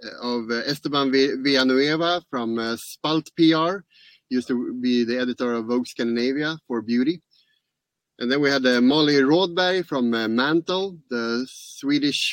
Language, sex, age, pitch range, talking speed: English, male, 30-49, 130-170 Hz, 150 wpm